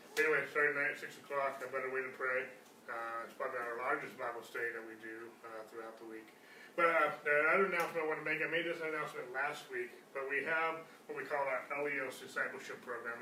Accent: American